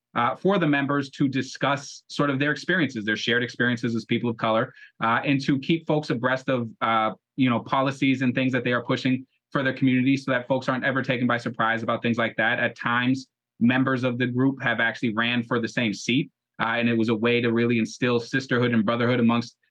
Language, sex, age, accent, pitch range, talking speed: English, male, 20-39, American, 115-130 Hz, 230 wpm